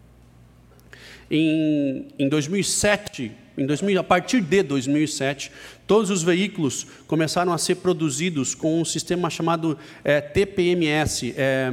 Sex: male